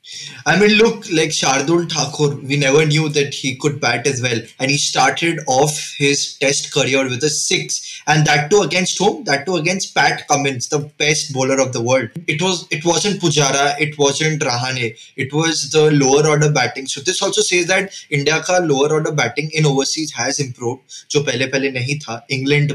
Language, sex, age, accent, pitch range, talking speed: Hindi, male, 20-39, native, 135-165 Hz, 200 wpm